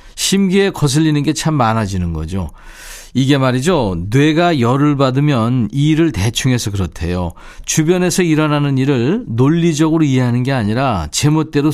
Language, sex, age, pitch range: Korean, male, 40-59, 115-165 Hz